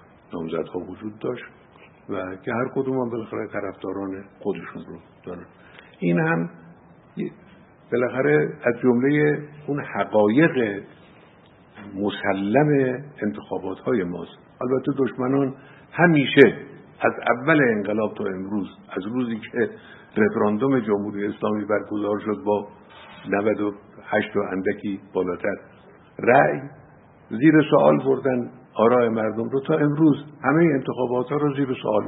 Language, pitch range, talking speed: Persian, 105-145 Hz, 110 wpm